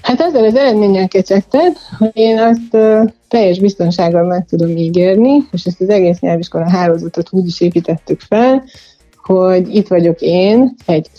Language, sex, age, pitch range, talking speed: Hungarian, female, 30-49, 165-220 Hz, 150 wpm